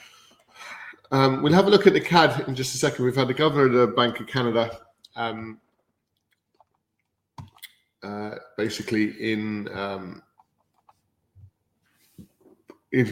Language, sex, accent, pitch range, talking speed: English, male, British, 105-125 Hz, 125 wpm